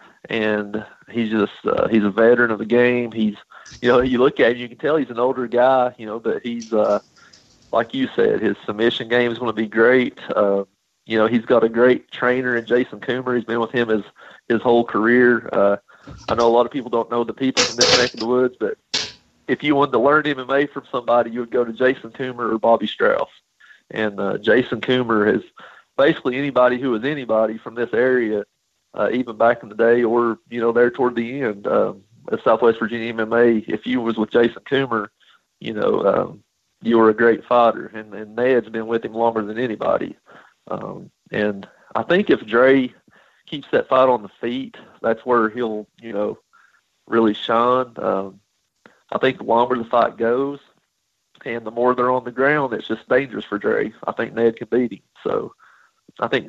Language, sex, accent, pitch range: English, male, American, 110-125 Hz